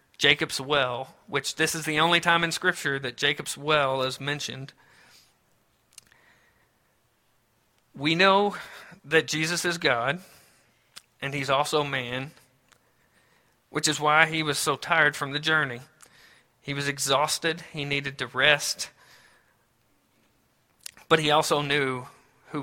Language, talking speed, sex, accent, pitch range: English, 125 wpm, male, American, 135-165 Hz